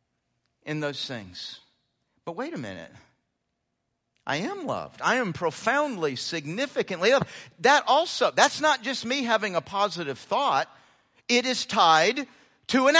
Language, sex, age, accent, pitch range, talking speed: English, male, 50-69, American, 195-280 Hz, 140 wpm